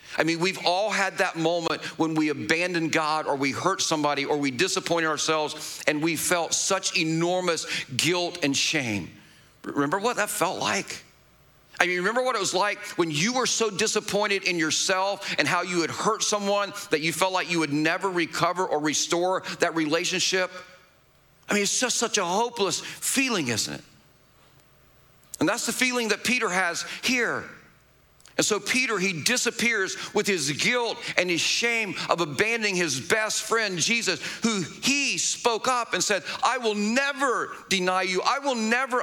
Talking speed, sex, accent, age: 175 wpm, male, American, 50-69